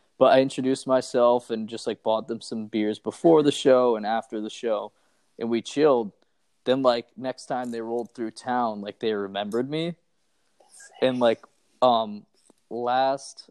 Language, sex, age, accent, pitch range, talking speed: English, male, 20-39, American, 115-135 Hz, 165 wpm